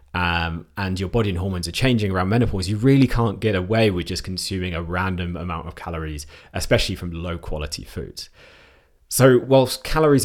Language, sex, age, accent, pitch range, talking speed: English, male, 30-49, British, 80-105 Hz, 180 wpm